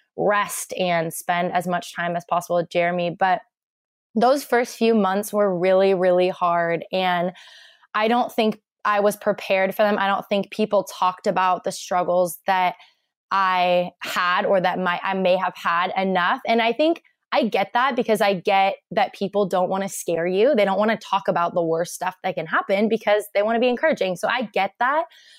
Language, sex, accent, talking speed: English, female, American, 200 wpm